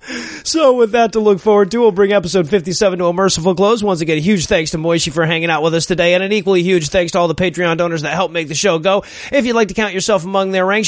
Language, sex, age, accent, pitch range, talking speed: English, male, 30-49, American, 170-205 Hz, 290 wpm